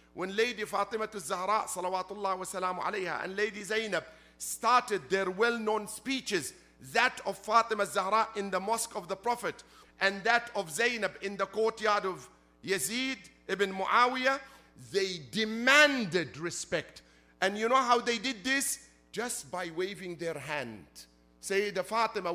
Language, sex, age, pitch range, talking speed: English, male, 50-69, 170-230 Hz, 140 wpm